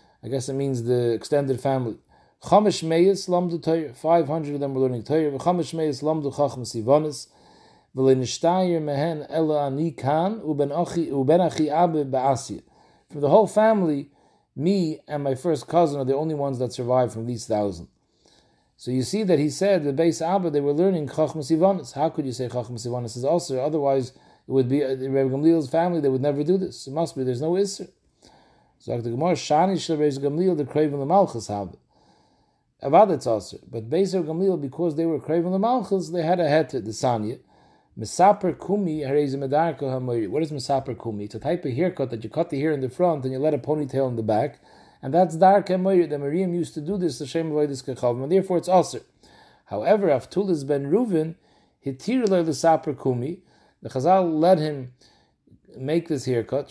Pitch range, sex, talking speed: 135-170 Hz, male, 165 wpm